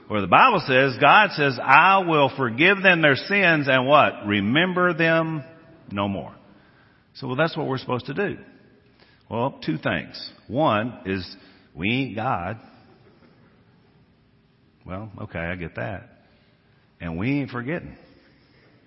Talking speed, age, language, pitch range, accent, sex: 135 wpm, 50-69, English, 110-145 Hz, American, male